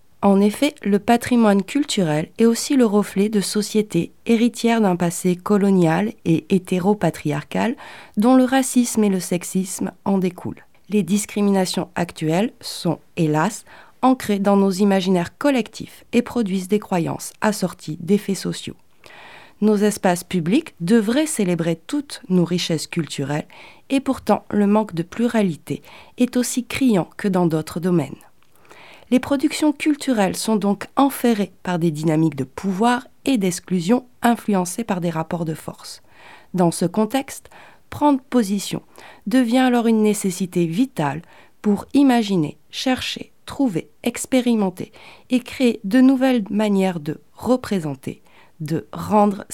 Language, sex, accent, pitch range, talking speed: French, female, French, 180-240 Hz, 130 wpm